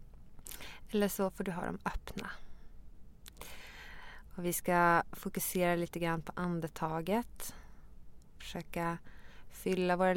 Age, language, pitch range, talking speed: 20-39, English, 170-195 Hz, 105 wpm